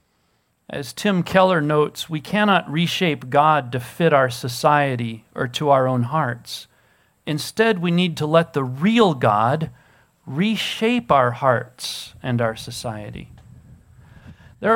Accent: American